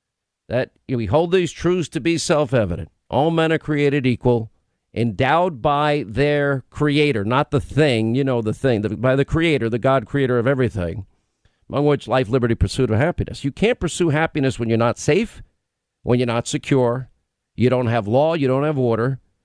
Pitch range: 120-160 Hz